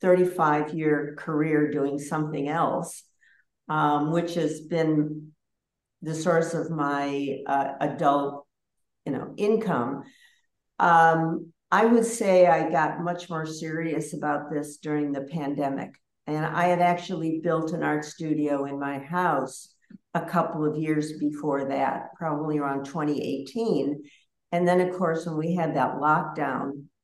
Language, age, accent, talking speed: English, 60-79, American, 130 wpm